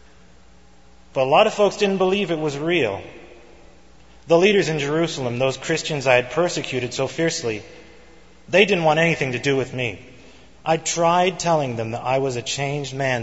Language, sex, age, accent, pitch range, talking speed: English, male, 30-49, American, 105-155 Hz, 175 wpm